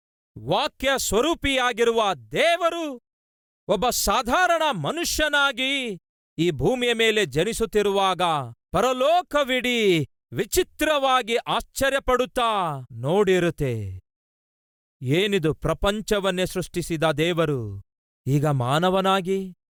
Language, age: Kannada, 40-59